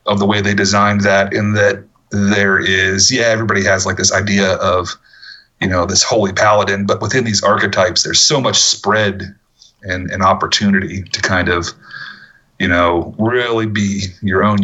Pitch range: 95-110 Hz